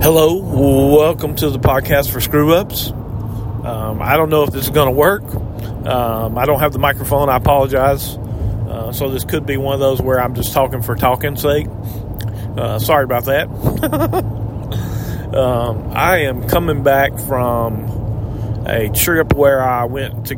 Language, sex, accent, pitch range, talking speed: English, male, American, 110-135 Hz, 165 wpm